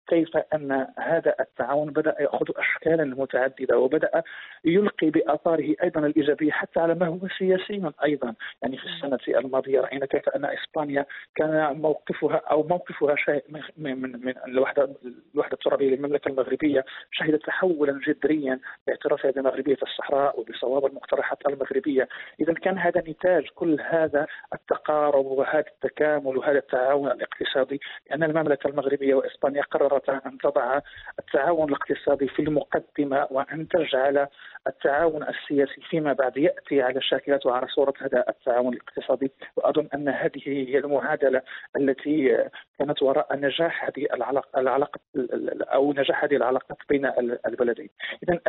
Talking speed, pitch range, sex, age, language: 120 wpm, 135-160 Hz, male, 40-59, English